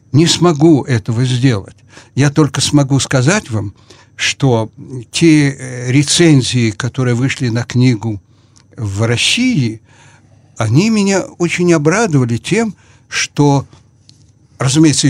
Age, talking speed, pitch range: 60-79, 100 wpm, 120-160 Hz